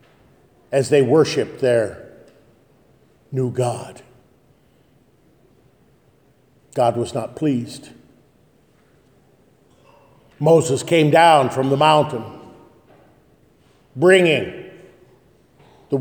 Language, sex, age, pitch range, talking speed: English, male, 50-69, 180-265 Hz, 65 wpm